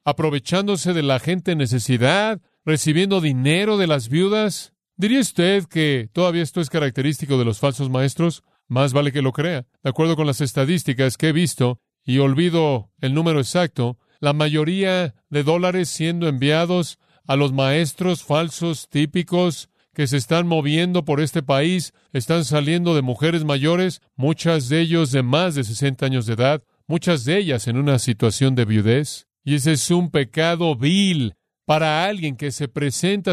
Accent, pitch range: Mexican, 135-175 Hz